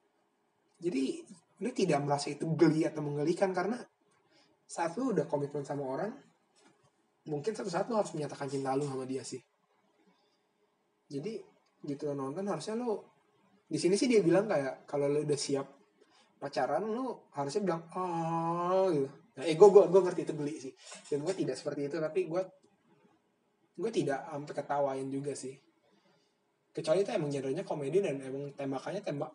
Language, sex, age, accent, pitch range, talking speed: Indonesian, male, 20-39, native, 140-185 Hz, 150 wpm